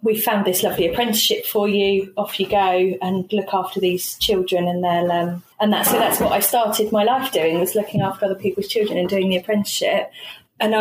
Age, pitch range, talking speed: 30-49, 190-215 Hz, 215 wpm